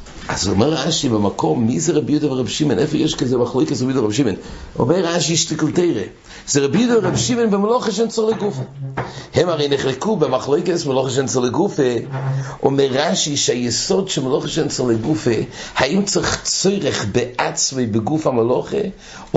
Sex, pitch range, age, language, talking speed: male, 125-165 Hz, 50-69, English, 60 wpm